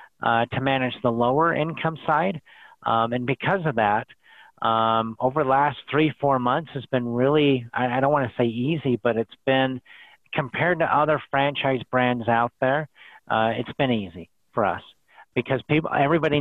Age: 40-59